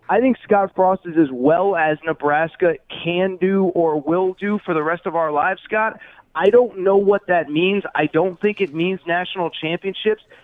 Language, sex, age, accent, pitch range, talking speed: English, male, 30-49, American, 155-190 Hz, 195 wpm